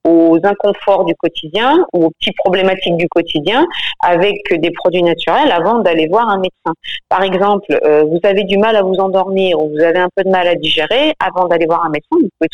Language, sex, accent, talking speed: French, female, French, 215 wpm